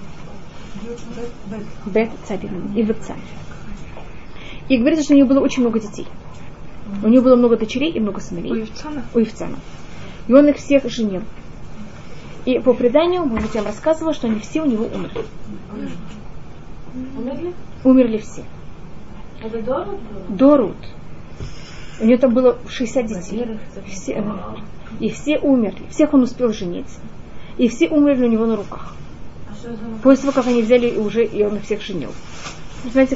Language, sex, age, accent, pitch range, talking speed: Russian, female, 20-39, native, 220-265 Hz, 125 wpm